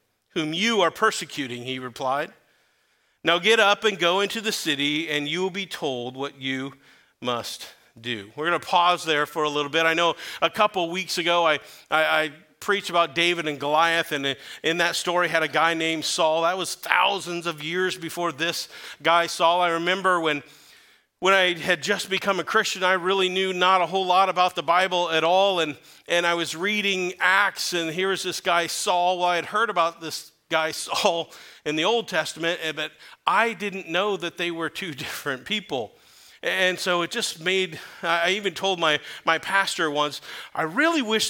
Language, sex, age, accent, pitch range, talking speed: English, male, 40-59, American, 155-185 Hz, 200 wpm